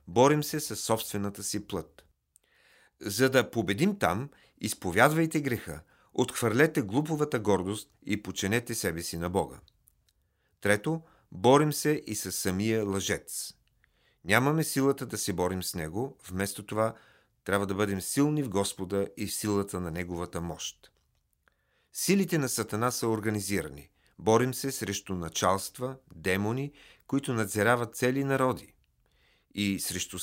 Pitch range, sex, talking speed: 95-125 Hz, male, 130 wpm